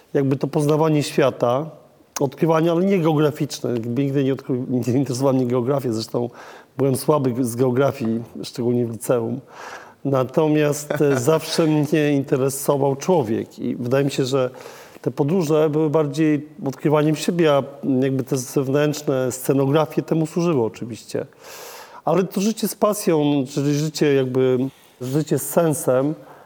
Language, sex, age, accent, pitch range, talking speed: Polish, male, 40-59, native, 130-155 Hz, 135 wpm